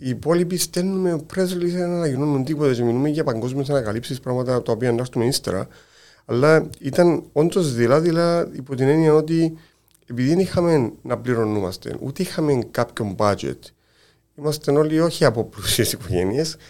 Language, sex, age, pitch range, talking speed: Greek, male, 40-59, 120-155 Hz, 145 wpm